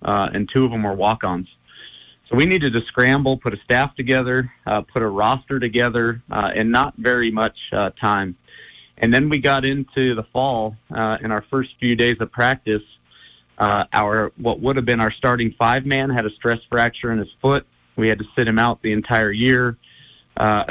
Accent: American